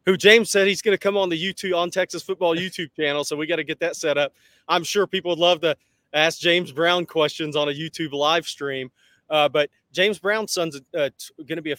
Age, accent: 30-49, American